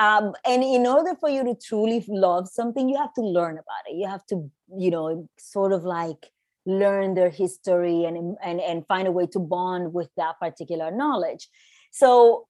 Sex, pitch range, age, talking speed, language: female, 180-230 Hz, 30-49, 190 wpm, English